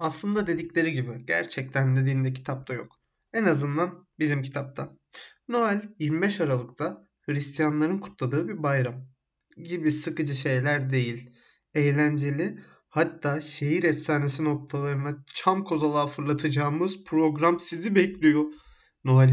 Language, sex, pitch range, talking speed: Turkish, male, 145-215 Hz, 105 wpm